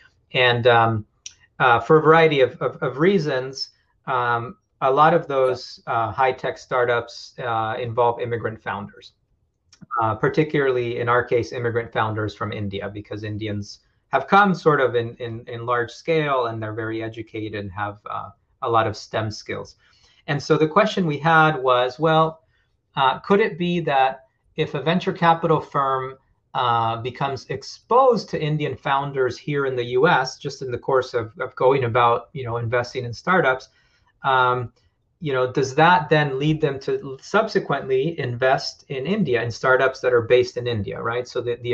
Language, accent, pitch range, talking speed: English, American, 115-150 Hz, 175 wpm